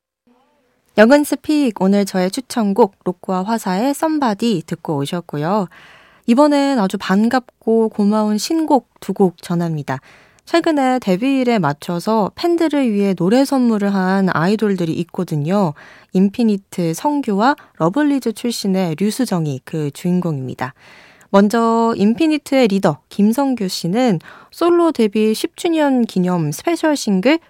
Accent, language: native, Korean